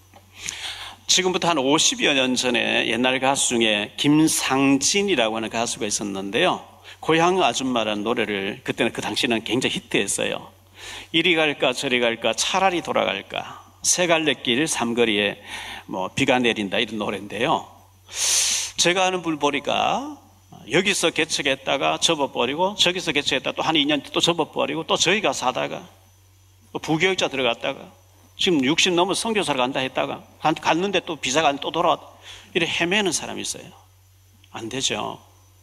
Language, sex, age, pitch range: Korean, male, 40-59, 100-165 Hz